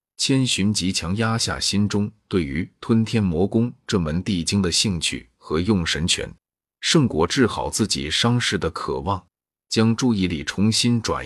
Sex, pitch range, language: male, 85-105 Hz, Chinese